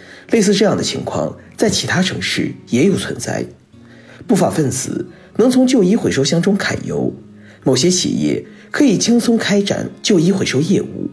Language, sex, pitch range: Chinese, male, 170-230 Hz